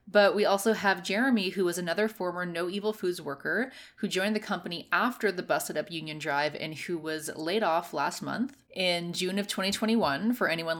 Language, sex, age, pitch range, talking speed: English, female, 20-39, 170-215 Hz, 200 wpm